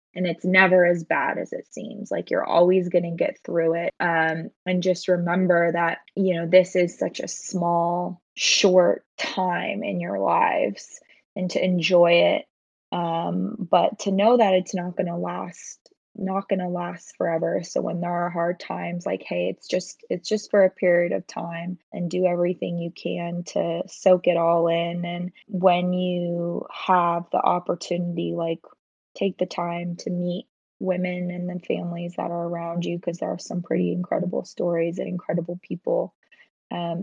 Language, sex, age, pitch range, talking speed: English, female, 20-39, 170-185 Hz, 180 wpm